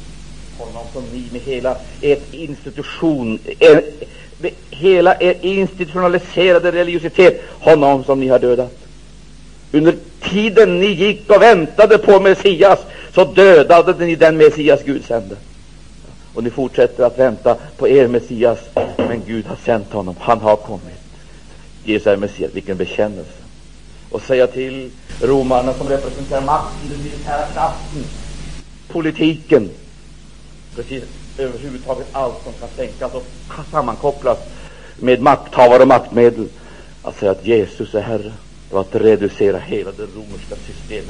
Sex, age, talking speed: male, 60-79, 135 wpm